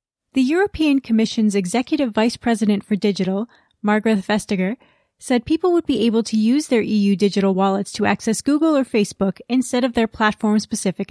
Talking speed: 160 wpm